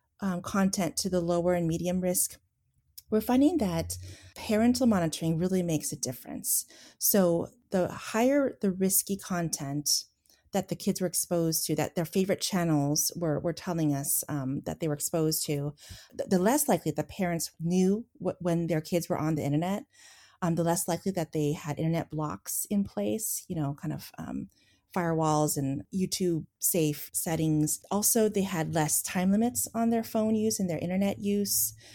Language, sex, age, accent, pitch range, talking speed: English, female, 30-49, American, 155-200 Hz, 170 wpm